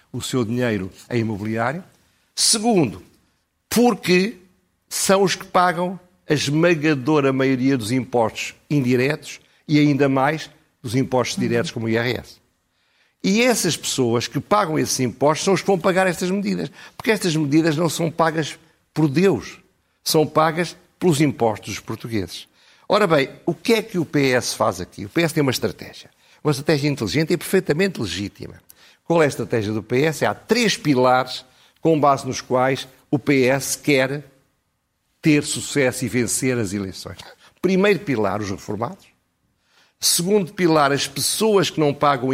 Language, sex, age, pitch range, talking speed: Portuguese, male, 50-69, 120-165 Hz, 155 wpm